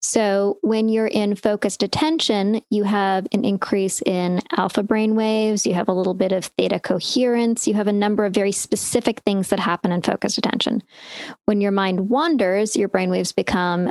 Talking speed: 175 wpm